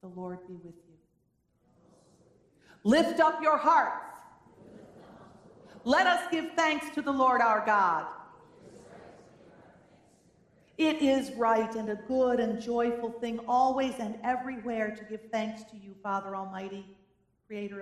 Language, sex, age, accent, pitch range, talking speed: English, female, 50-69, American, 185-240 Hz, 130 wpm